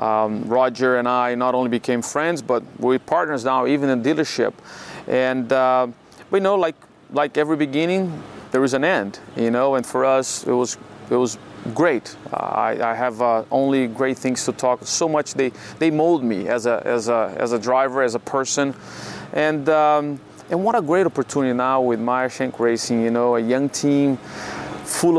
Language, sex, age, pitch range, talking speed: English, male, 30-49, 120-150 Hz, 195 wpm